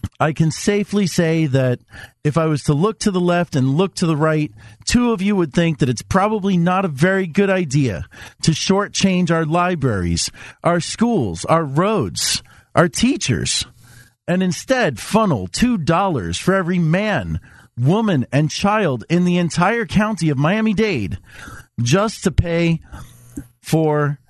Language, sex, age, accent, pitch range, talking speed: English, male, 40-59, American, 120-185 Hz, 150 wpm